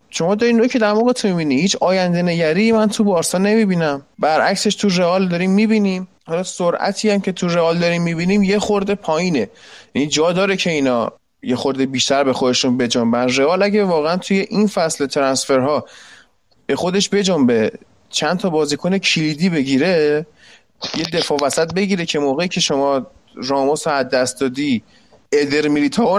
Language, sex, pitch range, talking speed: Persian, male, 155-210 Hz, 155 wpm